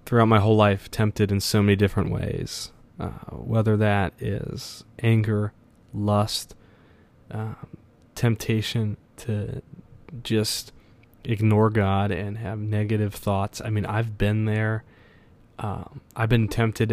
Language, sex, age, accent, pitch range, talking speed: English, male, 20-39, American, 100-115 Hz, 125 wpm